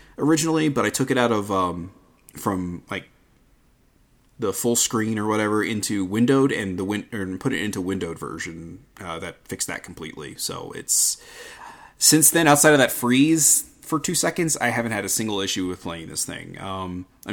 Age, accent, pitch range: 30-49, American, 100-140 Hz